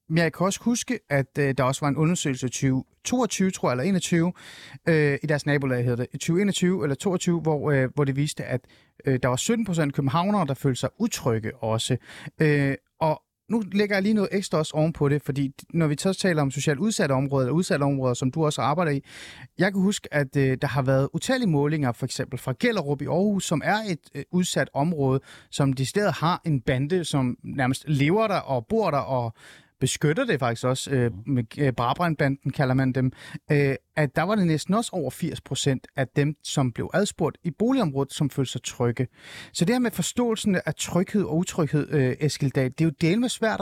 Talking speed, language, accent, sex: 210 wpm, Danish, native, male